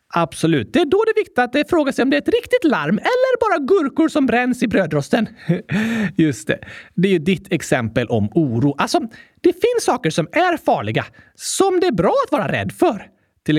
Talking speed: 210 wpm